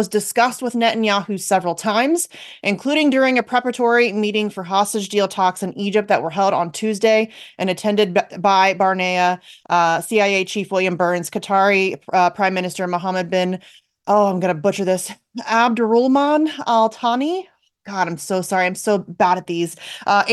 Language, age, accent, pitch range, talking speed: English, 30-49, American, 190-235 Hz, 170 wpm